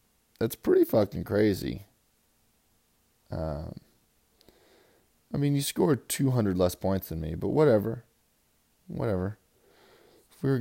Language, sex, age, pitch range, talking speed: English, male, 30-49, 95-125 Hz, 120 wpm